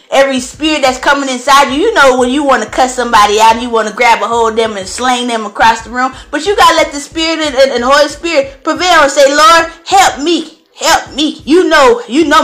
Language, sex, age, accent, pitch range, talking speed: English, female, 20-39, American, 265-375 Hz, 260 wpm